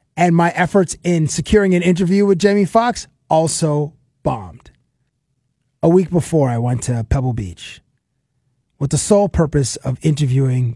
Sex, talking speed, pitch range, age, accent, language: male, 145 wpm, 130-165 Hz, 20-39, American, English